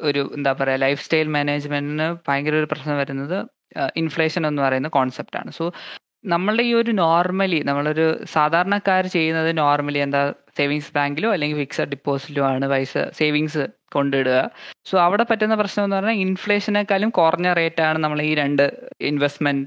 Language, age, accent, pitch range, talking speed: Malayalam, 20-39, native, 145-185 Hz, 145 wpm